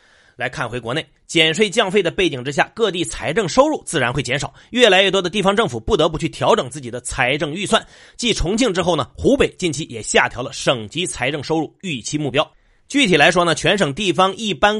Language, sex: Chinese, male